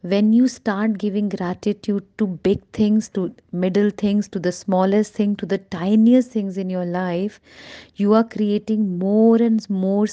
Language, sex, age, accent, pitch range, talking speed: Hindi, female, 30-49, native, 185-220 Hz, 165 wpm